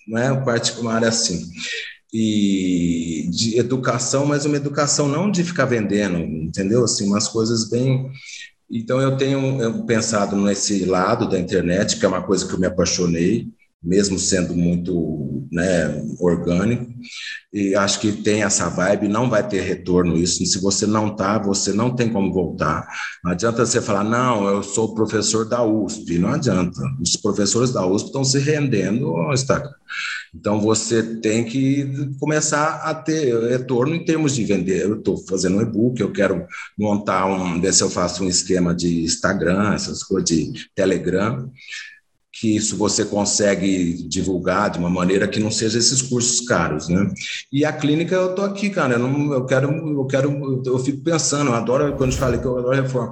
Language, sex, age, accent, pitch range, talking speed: Portuguese, male, 40-59, Brazilian, 100-130 Hz, 175 wpm